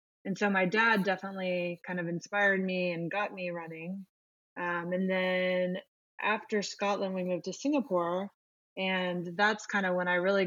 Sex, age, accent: female, 20-39, American